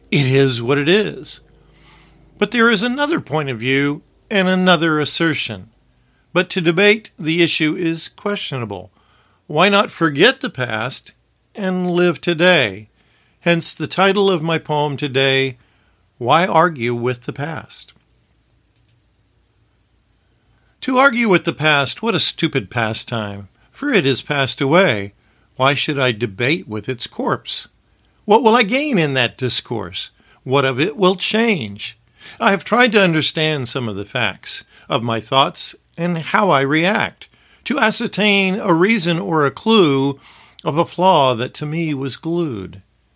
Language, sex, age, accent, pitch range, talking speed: English, male, 50-69, American, 120-180 Hz, 145 wpm